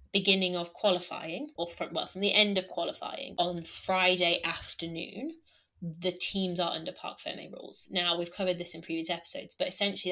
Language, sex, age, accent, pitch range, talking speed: English, female, 20-39, British, 175-200 Hz, 180 wpm